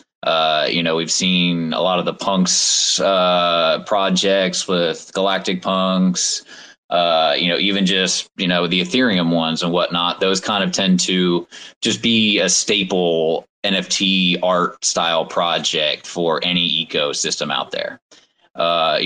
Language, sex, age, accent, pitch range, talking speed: English, male, 20-39, American, 85-95 Hz, 145 wpm